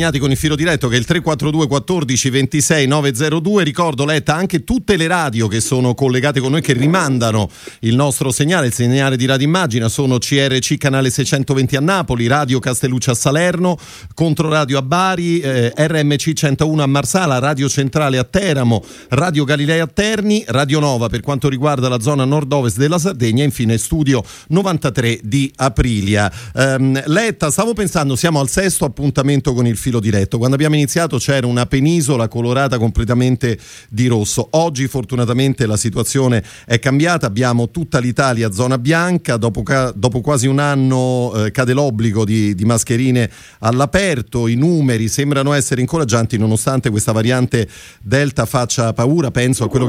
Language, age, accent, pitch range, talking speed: Italian, 40-59, native, 120-150 Hz, 160 wpm